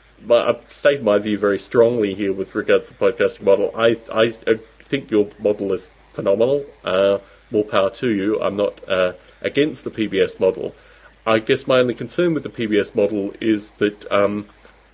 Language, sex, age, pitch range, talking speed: English, male, 30-49, 105-140 Hz, 180 wpm